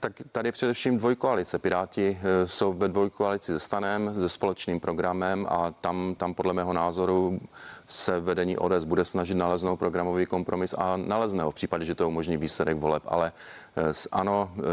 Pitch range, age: 90-100 Hz, 30-49